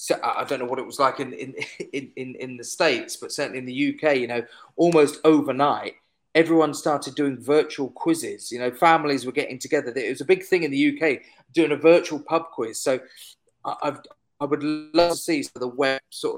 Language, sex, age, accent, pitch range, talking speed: English, male, 30-49, British, 125-155 Hz, 215 wpm